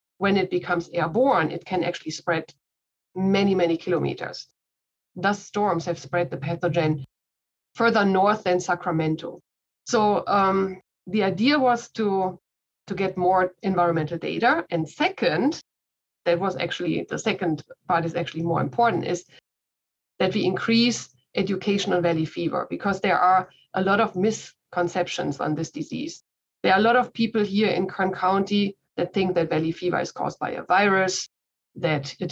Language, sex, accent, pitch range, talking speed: English, female, German, 170-200 Hz, 155 wpm